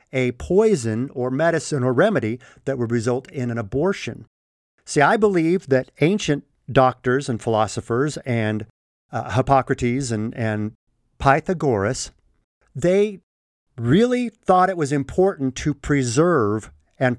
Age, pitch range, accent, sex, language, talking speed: 50-69, 110-150 Hz, American, male, English, 120 wpm